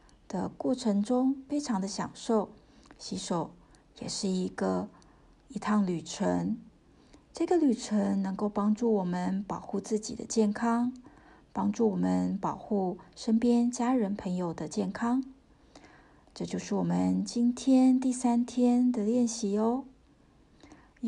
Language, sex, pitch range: Chinese, female, 185-240 Hz